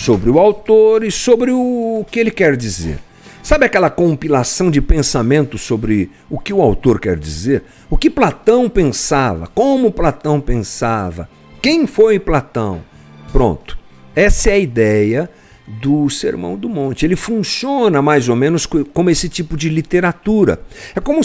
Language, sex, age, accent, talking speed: Portuguese, male, 50-69, Brazilian, 150 wpm